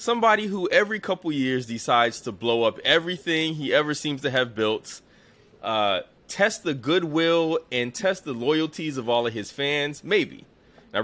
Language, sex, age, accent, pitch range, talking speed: English, male, 20-39, American, 110-145 Hz, 170 wpm